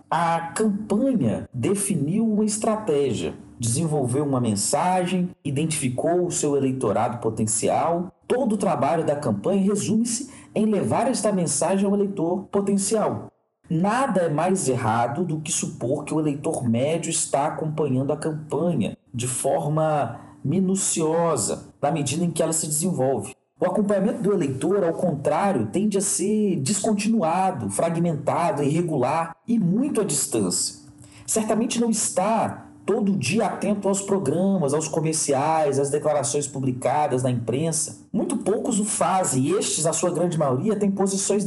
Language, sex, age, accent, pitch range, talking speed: Portuguese, male, 40-59, Brazilian, 145-200 Hz, 135 wpm